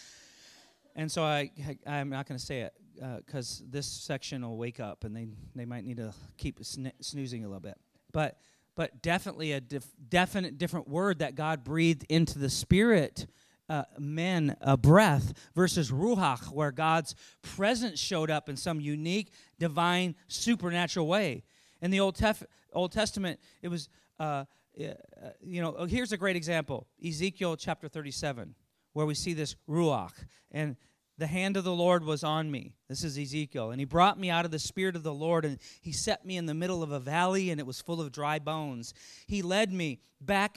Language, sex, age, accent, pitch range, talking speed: English, male, 40-59, American, 145-190 Hz, 190 wpm